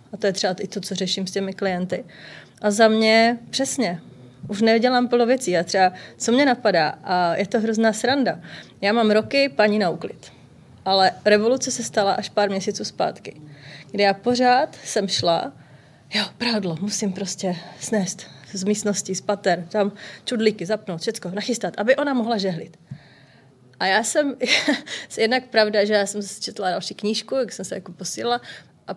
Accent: native